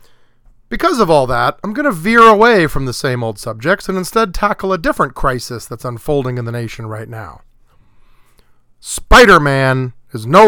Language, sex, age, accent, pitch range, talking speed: English, male, 40-59, American, 120-150 Hz, 170 wpm